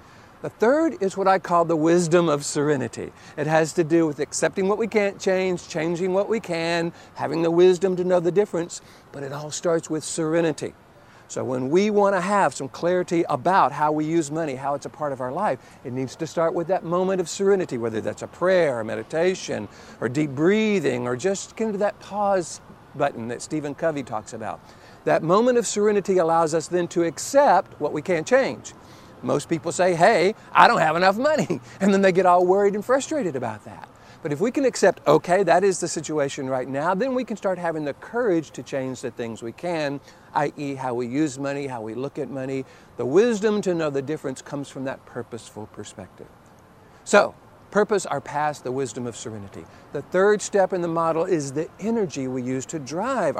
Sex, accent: male, American